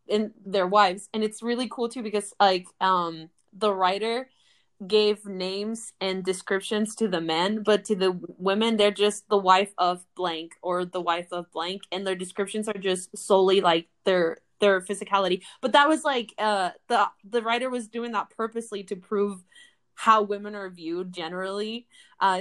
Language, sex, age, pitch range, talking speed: English, female, 20-39, 185-225 Hz, 175 wpm